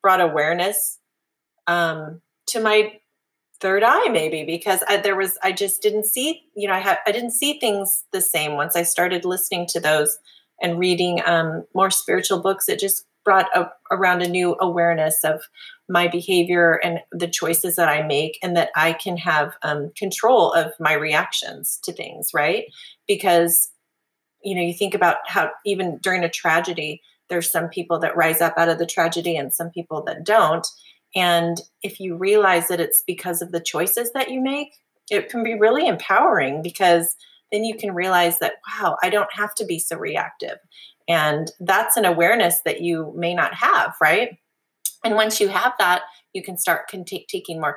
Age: 30-49